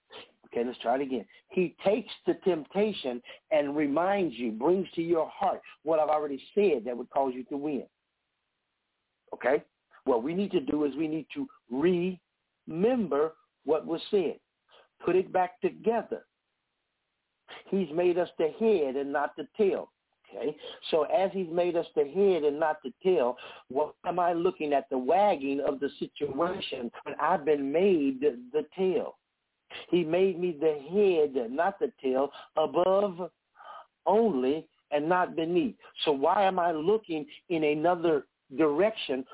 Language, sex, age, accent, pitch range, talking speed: English, male, 60-79, American, 150-195 Hz, 155 wpm